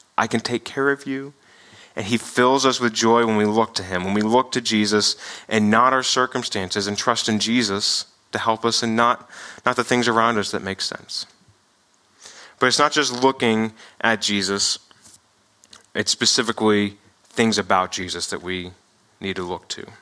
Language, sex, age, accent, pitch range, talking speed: English, male, 30-49, American, 105-135 Hz, 185 wpm